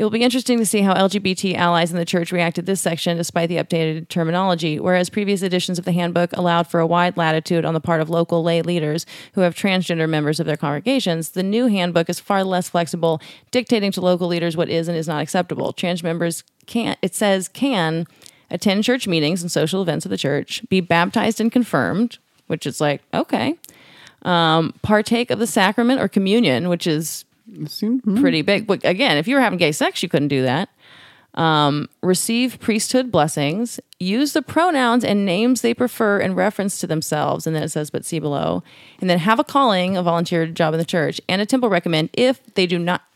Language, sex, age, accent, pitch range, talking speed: English, female, 30-49, American, 165-220 Hz, 205 wpm